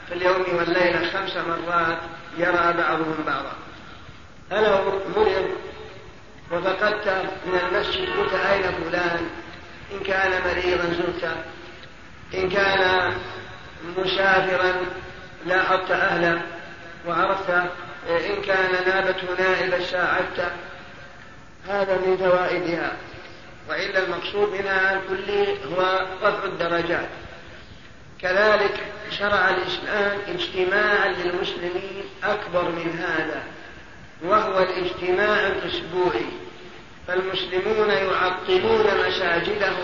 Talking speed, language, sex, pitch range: 85 wpm, Arabic, male, 175-195 Hz